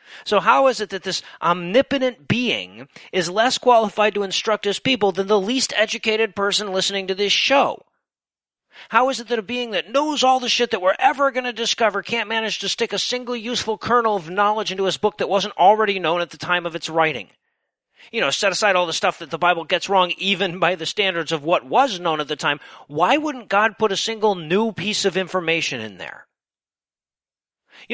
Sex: male